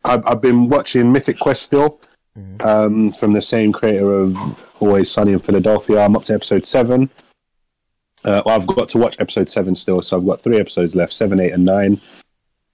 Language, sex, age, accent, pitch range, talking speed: English, male, 30-49, British, 95-115 Hz, 195 wpm